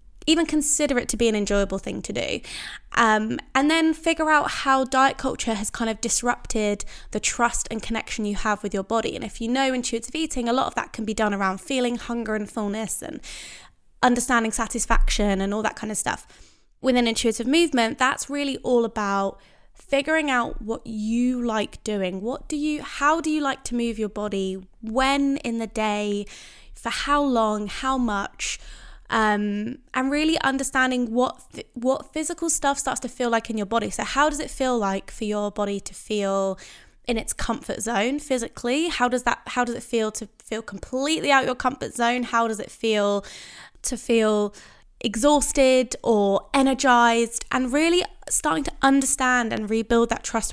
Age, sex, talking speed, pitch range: 10-29, female, 185 wpm, 215-265 Hz